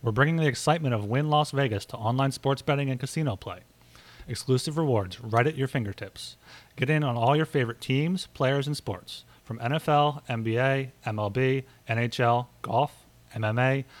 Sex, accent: male, American